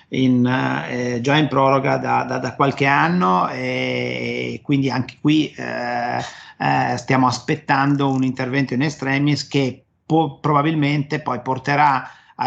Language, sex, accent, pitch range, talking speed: Italian, male, native, 130-145 Hz, 140 wpm